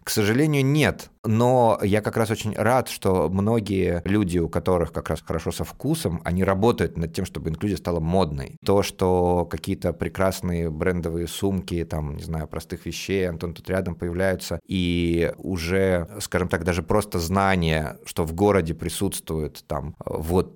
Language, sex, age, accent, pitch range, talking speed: Russian, male, 20-39, native, 85-100 Hz, 160 wpm